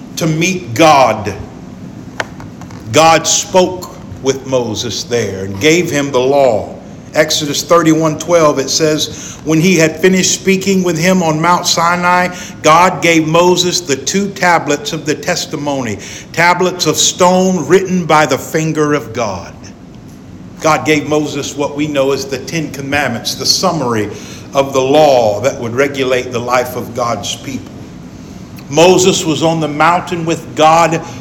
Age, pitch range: 50-69, 140-180 Hz